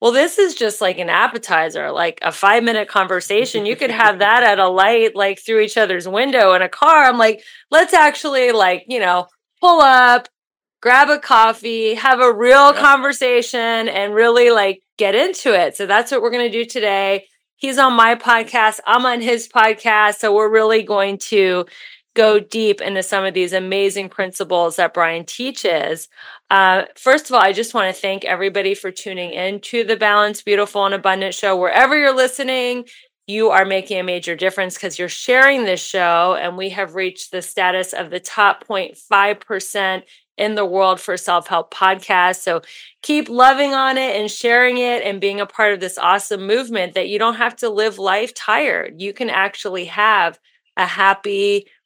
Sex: female